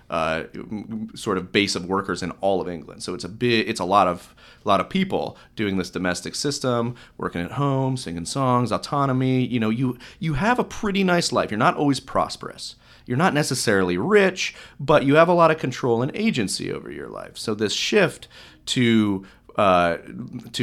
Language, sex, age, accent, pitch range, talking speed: English, male, 30-49, American, 90-125 Hz, 190 wpm